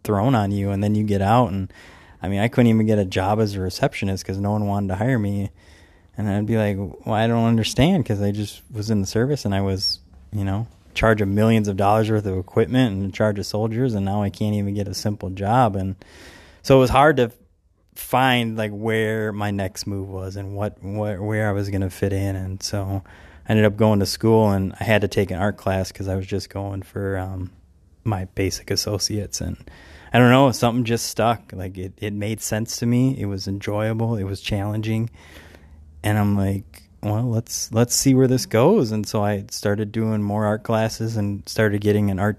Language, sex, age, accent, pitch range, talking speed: English, male, 20-39, American, 95-110 Hz, 225 wpm